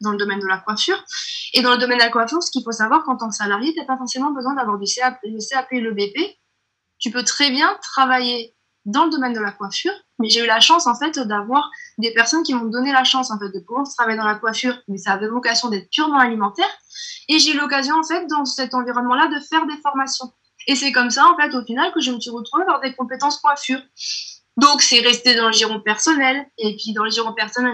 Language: French